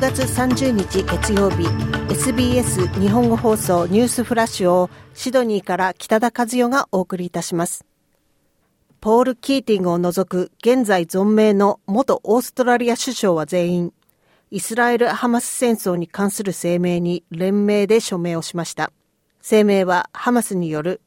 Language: Japanese